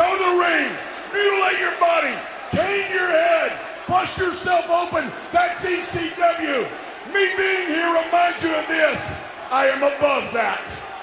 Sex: male